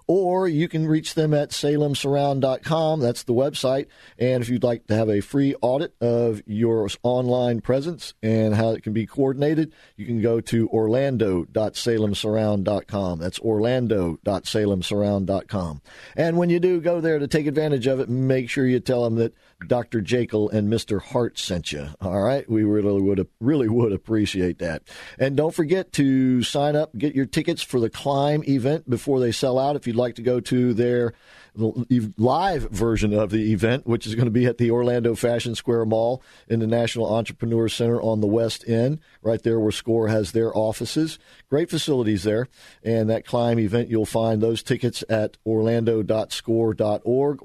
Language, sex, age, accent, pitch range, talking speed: English, male, 50-69, American, 110-130 Hz, 175 wpm